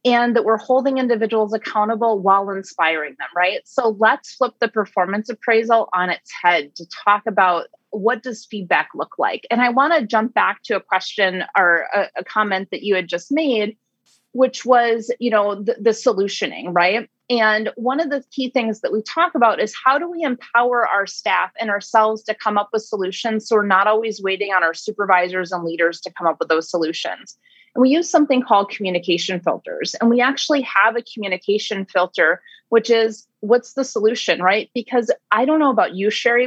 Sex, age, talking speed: female, 30-49, 195 wpm